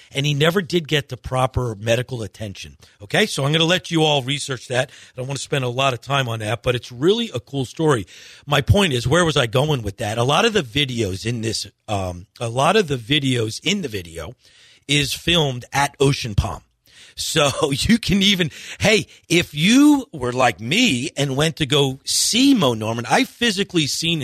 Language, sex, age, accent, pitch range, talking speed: English, male, 40-59, American, 115-155 Hz, 215 wpm